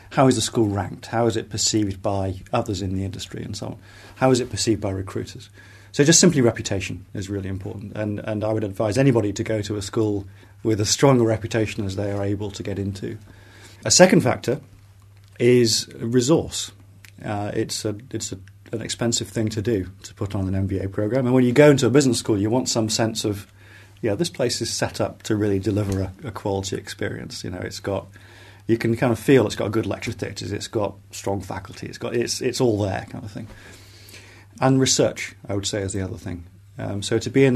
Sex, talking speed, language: male, 230 wpm, English